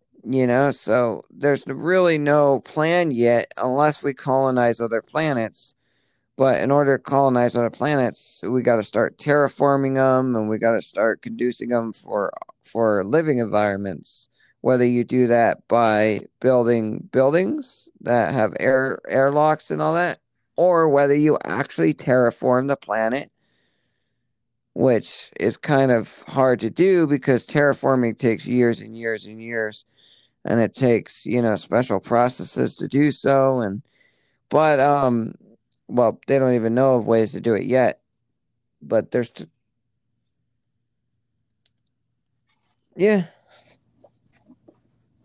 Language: English